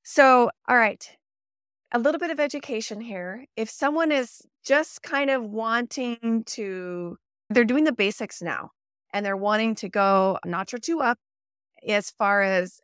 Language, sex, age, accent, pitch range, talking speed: English, female, 30-49, American, 185-235 Hz, 165 wpm